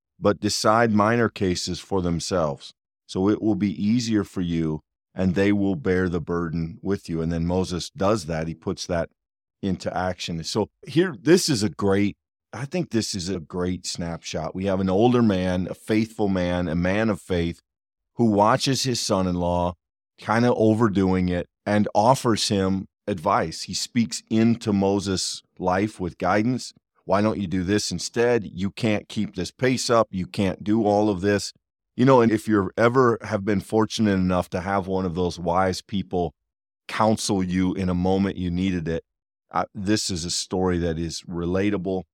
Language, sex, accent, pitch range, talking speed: English, male, American, 90-105 Hz, 180 wpm